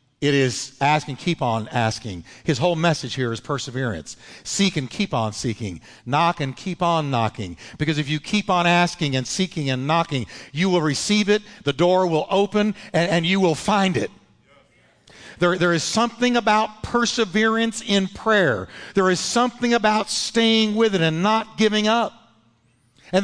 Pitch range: 145-215 Hz